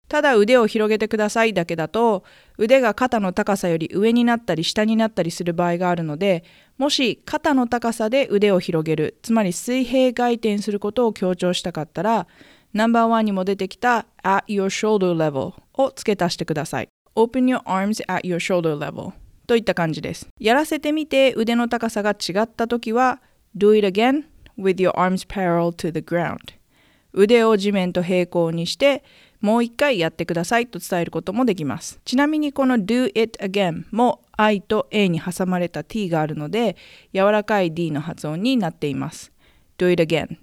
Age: 20-39